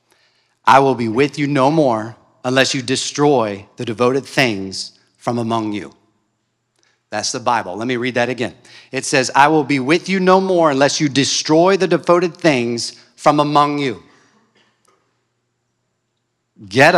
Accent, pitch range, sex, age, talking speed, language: American, 120-150 Hz, male, 40-59, 150 wpm, English